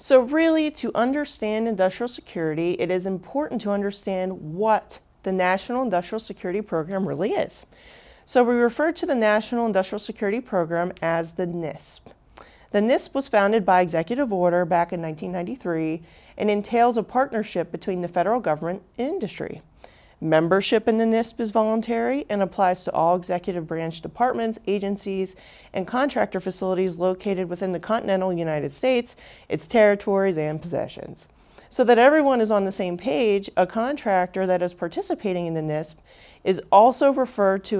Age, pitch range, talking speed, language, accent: 40-59, 180-225 Hz, 155 wpm, English, American